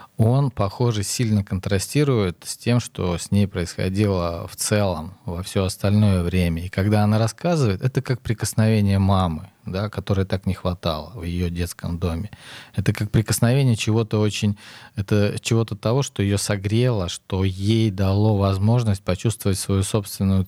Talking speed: 145 wpm